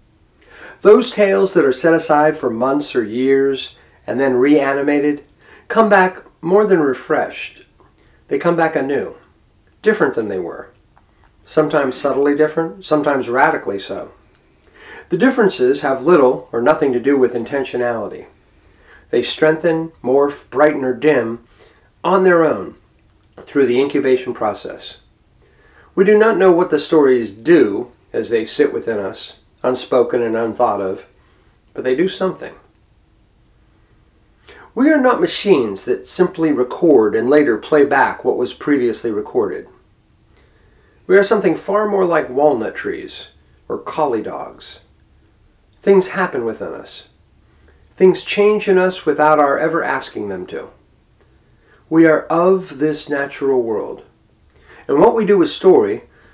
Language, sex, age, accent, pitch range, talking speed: English, male, 50-69, American, 135-210 Hz, 135 wpm